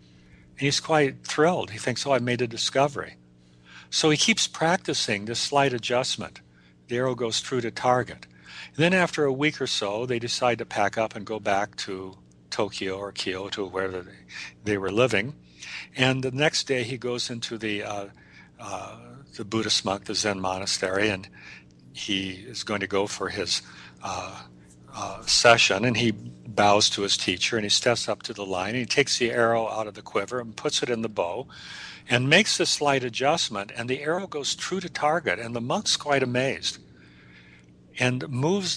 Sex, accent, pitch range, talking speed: male, American, 95-130 Hz, 185 wpm